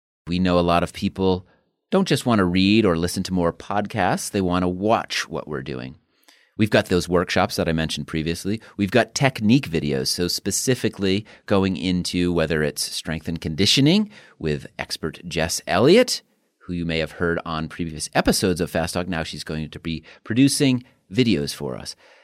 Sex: male